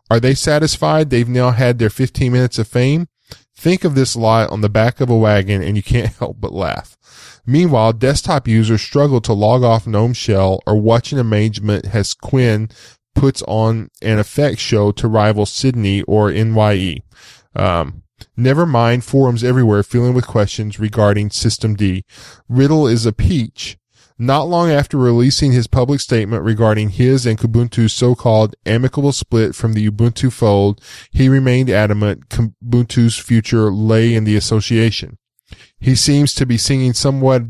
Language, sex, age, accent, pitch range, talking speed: English, male, 10-29, American, 105-125 Hz, 160 wpm